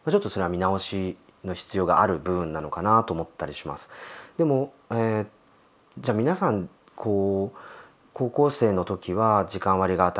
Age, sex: 30-49, male